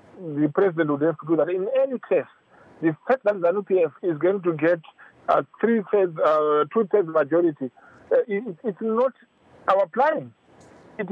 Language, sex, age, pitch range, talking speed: English, male, 50-69, 170-230 Hz, 155 wpm